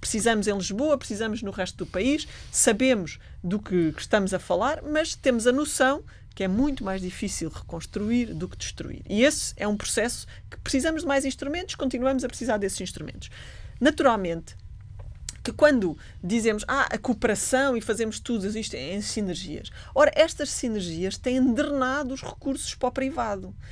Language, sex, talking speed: Portuguese, female, 165 wpm